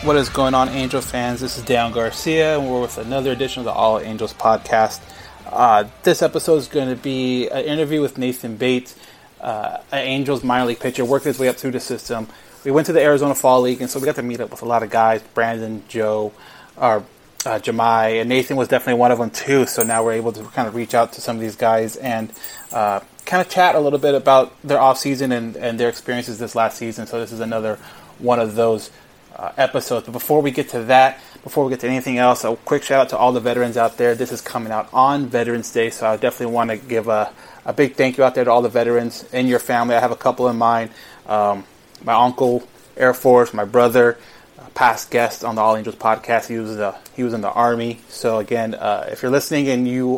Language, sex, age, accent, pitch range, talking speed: English, male, 30-49, American, 115-135 Hz, 245 wpm